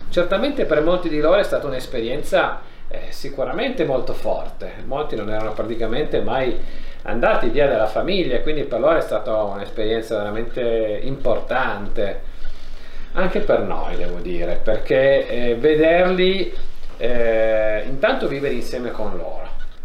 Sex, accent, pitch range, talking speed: male, native, 115-155 Hz, 125 wpm